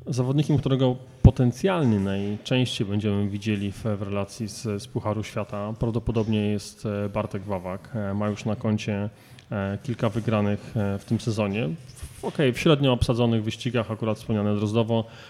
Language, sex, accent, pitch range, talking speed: Polish, male, native, 105-125 Hz, 130 wpm